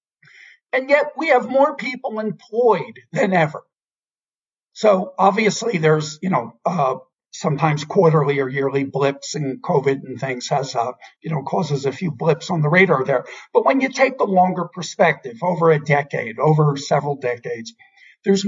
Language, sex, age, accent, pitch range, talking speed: English, male, 50-69, American, 165-235 Hz, 160 wpm